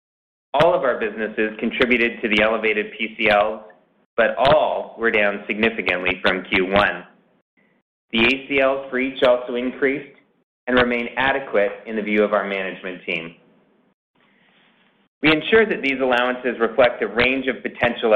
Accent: American